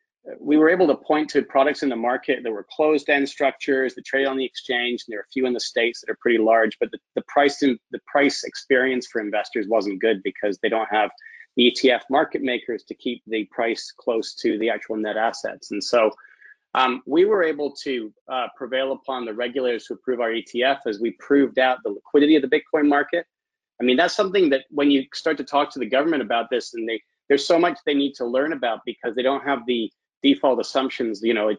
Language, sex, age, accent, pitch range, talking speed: English, male, 30-49, American, 120-140 Hz, 230 wpm